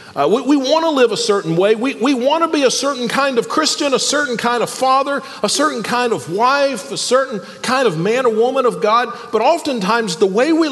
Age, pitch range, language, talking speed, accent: 40-59, 195-275 Hz, English, 240 wpm, American